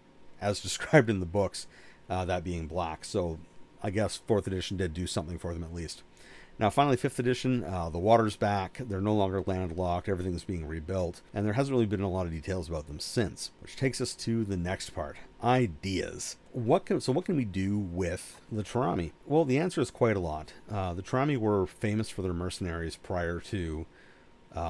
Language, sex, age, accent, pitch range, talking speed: English, male, 50-69, American, 90-110 Hz, 205 wpm